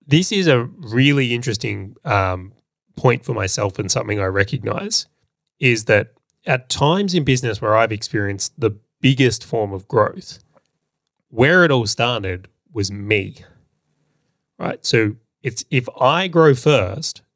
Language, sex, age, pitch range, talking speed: English, male, 20-39, 105-130 Hz, 140 wpm